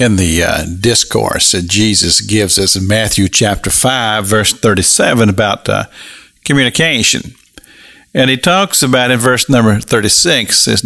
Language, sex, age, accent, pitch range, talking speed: English, male, 50-69, American, 105-130 Hz, 145 wpm